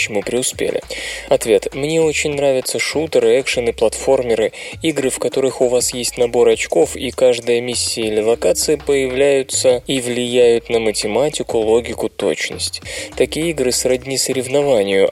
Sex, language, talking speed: male, Russian, 130 wpm